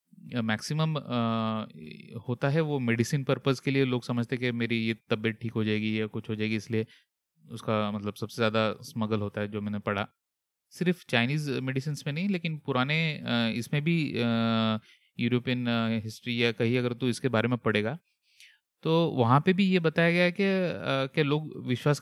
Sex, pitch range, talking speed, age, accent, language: male, 115-145 Hz, 170 wpm, 30-49, native, Hindi